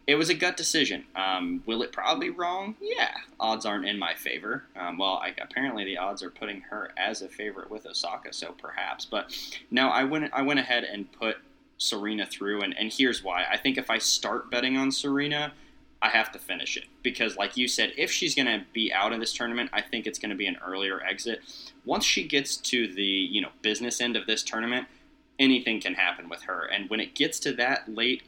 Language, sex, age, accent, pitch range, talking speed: English, male, 20-39, American, 100-135 Hz, 225 wpm